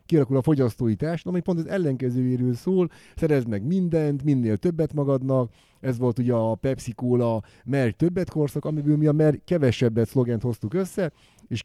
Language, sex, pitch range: Hungarian, male, 120-155 Hz